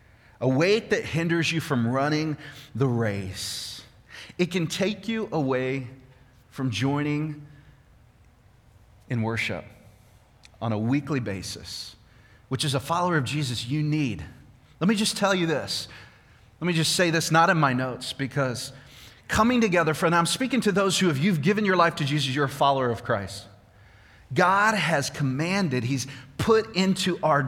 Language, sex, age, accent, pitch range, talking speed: English, male, 30-49, American, 120-170 Hz, 160 wpm